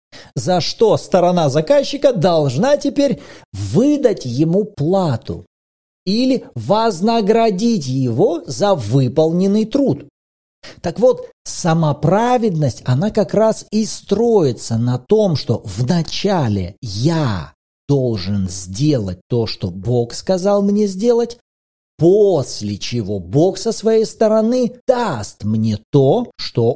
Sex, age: male, 40-59